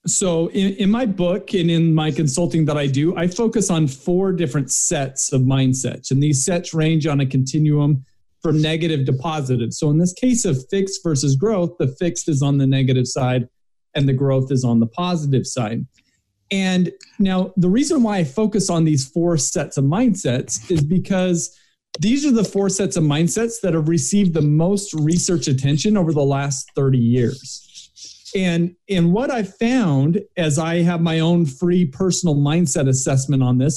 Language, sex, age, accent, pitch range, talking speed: English, male, 40-59, American, 140-195 Hz, 185 wpm